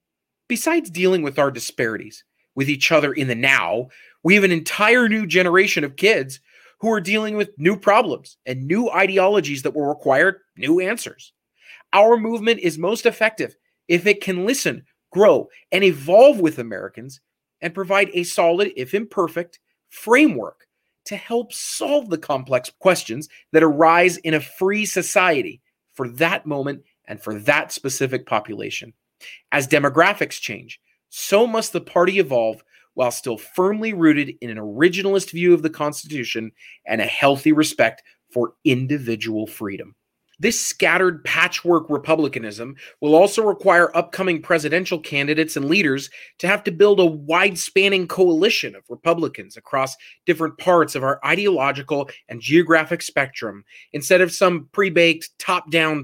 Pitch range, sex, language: 145-195 Hz, male, English